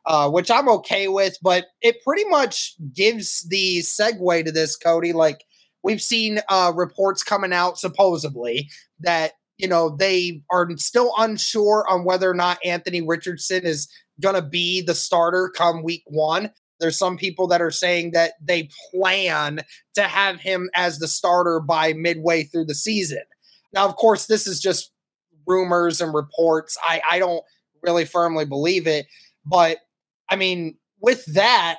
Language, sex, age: English, male, 20-39